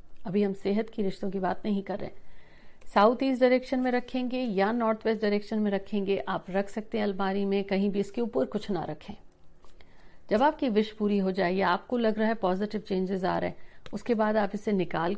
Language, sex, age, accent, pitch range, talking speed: Hindi, female, 50-69, native, 185-220 Hz, 220 wpm